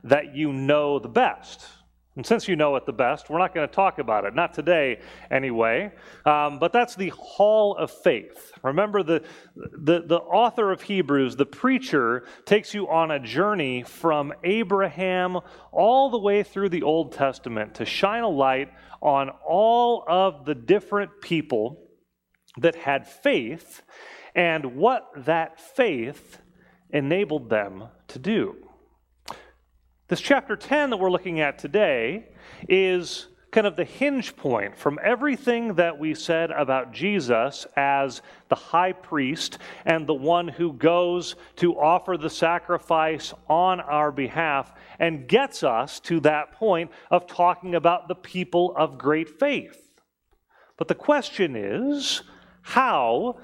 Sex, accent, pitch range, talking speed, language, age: male, American, 145-200 Hz, 145 wpm, English, 30-49